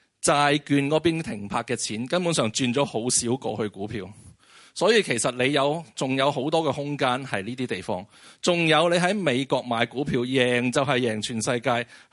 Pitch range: 115-145 Hz